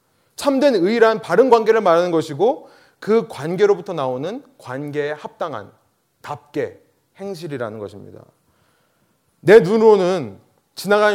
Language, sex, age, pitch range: Korean, male, 30-49, 140-235 Hz